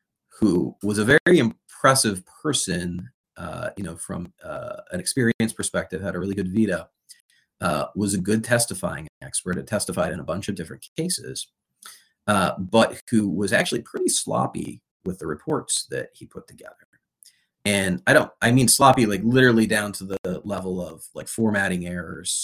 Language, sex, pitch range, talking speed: English, male, 90-115 Hz, 170 wpm